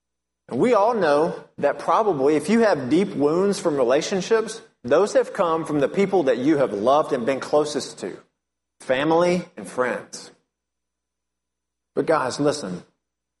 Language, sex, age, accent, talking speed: English, male, 30-49, American, 150 wpm